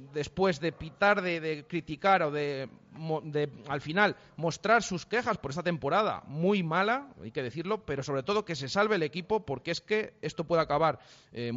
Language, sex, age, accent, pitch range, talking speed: Spanish, male, 30-49, Spanish, 140-185 Hz, 190 wpm